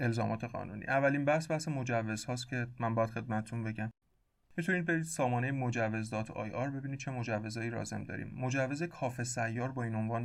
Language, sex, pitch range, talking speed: Persian, male, 115-145 Hz, 180 wpm